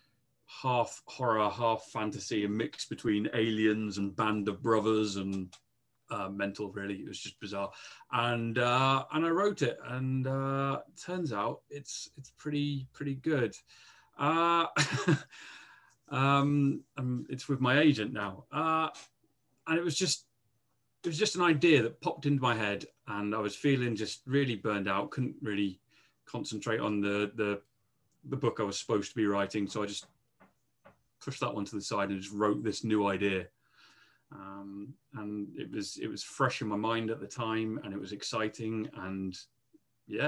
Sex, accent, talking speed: male, British, 170 wpm